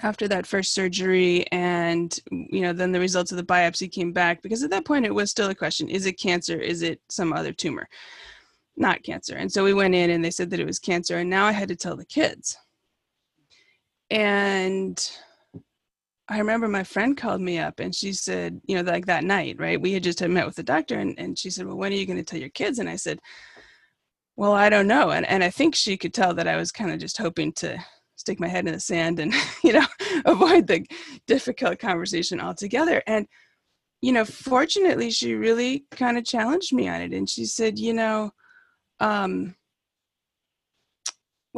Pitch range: 175-210 Hz